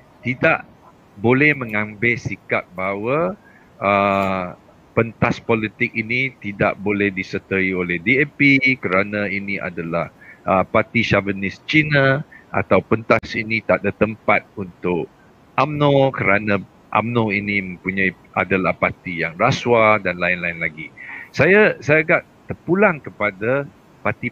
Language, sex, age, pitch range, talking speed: Malay, male, 50-69, 95-125 Hz, 115 wpm